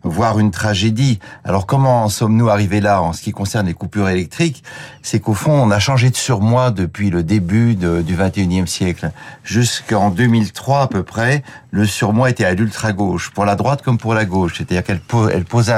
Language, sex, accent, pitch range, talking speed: French, male, French, 105-130 Hz, 200 wpm